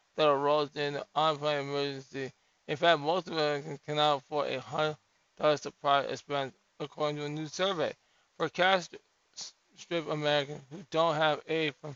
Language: English